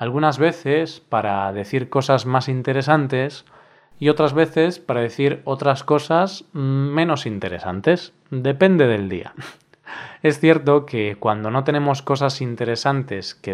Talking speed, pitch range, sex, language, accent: 125 wpm, 125-160 Hz, male, Spanish, Spanish